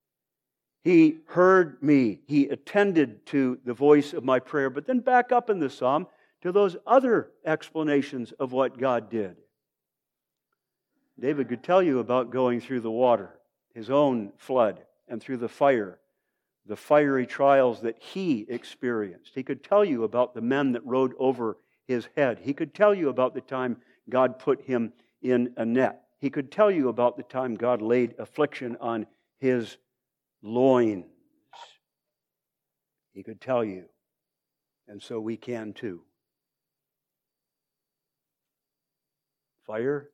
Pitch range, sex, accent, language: 120-140 Hz, male, American, English